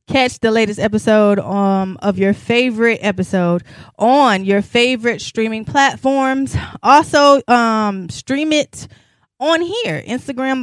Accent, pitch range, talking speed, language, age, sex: American, 200-265 Hz, 120 wpm, English, 20-39, female